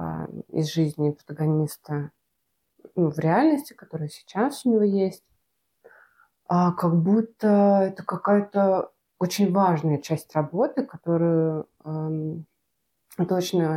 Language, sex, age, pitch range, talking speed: Russian, female, 20-39, 165-205 Hz, 100 wpm